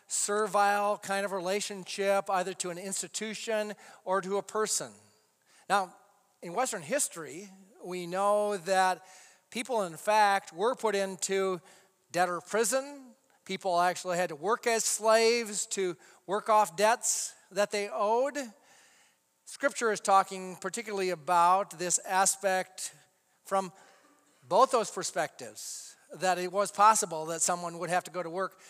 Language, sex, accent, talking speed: English, male, American, 135 wpm